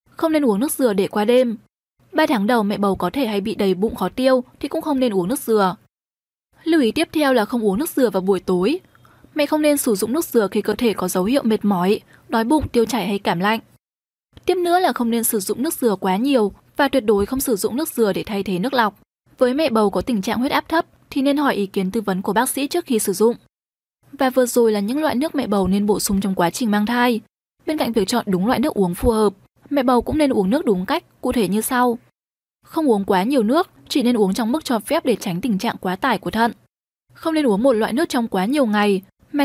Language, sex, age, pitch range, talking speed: Vietnamese, female, 10-29, 205-275 Hz, 270 wpm